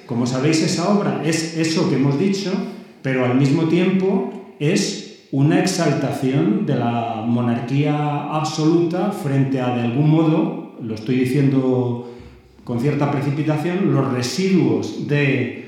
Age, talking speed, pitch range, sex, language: 40-59, 130 wpm, 130-170 Hz, male, Spanish